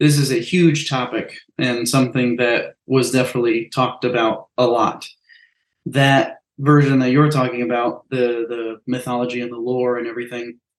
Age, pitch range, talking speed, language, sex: 20-39, 125-155 Hz, 155 wpm, English, male